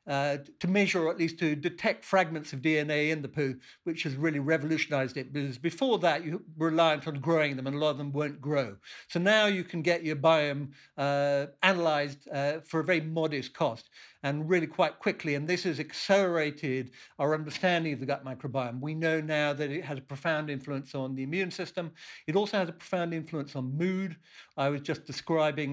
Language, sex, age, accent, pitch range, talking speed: English, male, 60-79, British, 140-165 Hz, 210 wpm